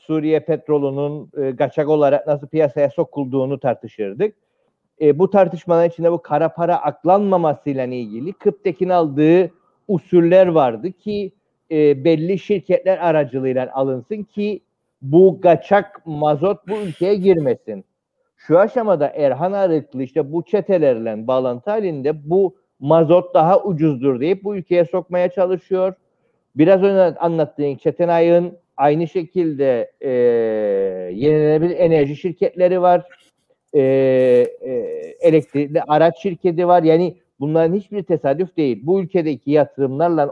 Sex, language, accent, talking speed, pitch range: male, Turkish, native, 120 wpm, 145-185 Hz